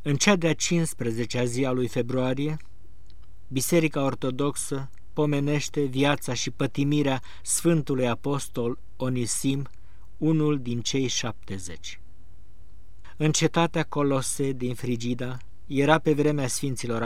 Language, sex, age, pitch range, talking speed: Romanian, male, 50-69, 115-155 Hz, 105 wpm